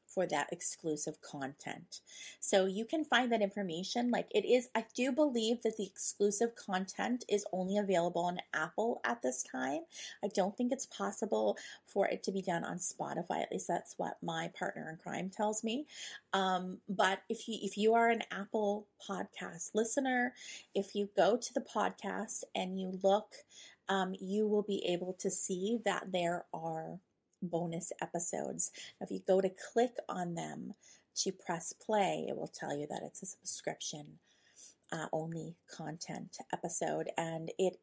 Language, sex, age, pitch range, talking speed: English, female, 30-49, 185-240 Hz, 170 wpm